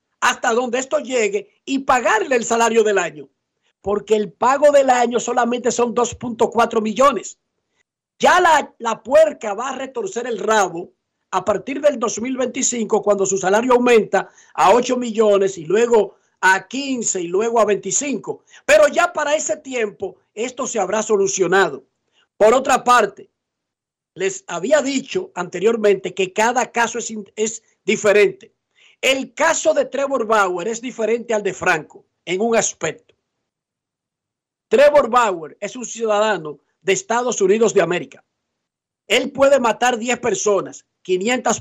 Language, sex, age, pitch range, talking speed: Spanish, male, 50-69, 205-260 Hz, 140 wpm